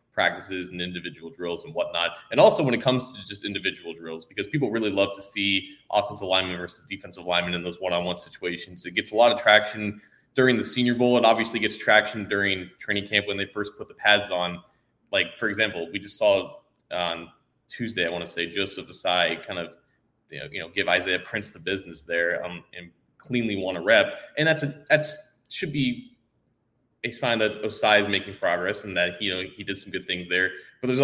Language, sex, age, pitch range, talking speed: English, male, 20-39, 95-120 Hz, 215 wpm